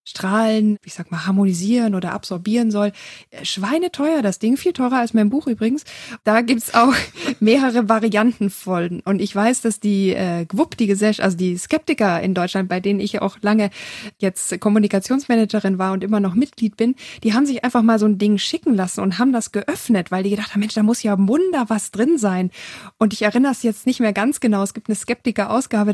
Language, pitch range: German, 195-235 Hz